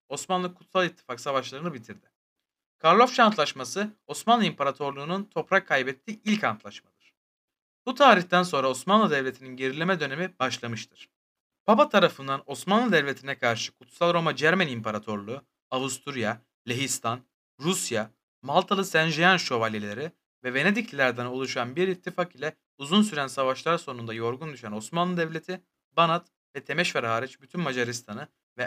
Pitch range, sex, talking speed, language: 125-180 Hz, male, 115 wpm, Turkish